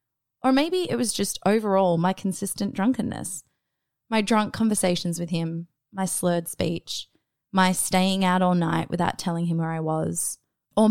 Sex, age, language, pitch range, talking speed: female, 20-39, English, 160-195 Hz, 160 wpm